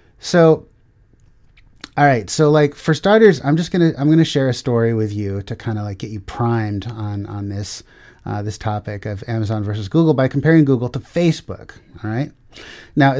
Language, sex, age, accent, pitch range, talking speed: English, male, 30-49, American, 110-135 Hz, 200 wpm